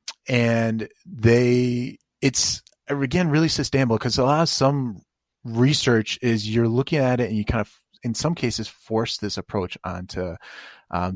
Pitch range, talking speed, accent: 105-130 Hz, 155 wpm, American